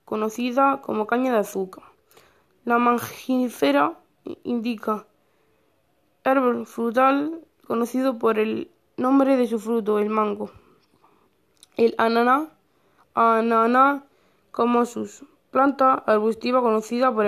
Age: 20-39